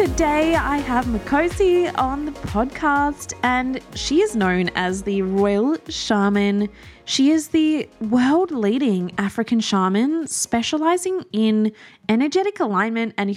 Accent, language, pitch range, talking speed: Australian, English, 195-260 Hz, 115 wpm